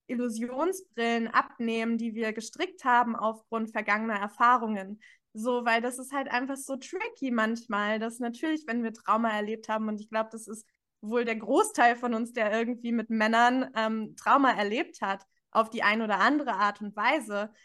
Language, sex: German, female